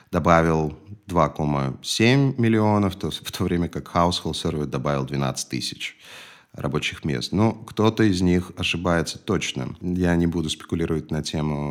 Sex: male